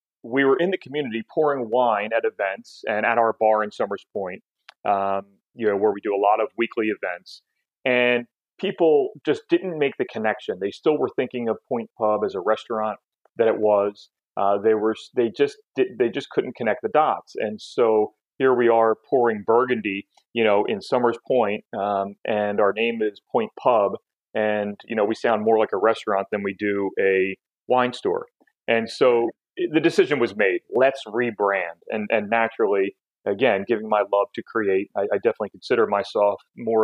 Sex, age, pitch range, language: male, 30-49, 105-135 Hz, English